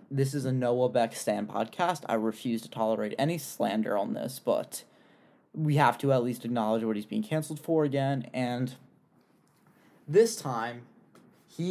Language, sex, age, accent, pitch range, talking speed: English, male, 20-39, American, 120-160 Hz, 165 wpm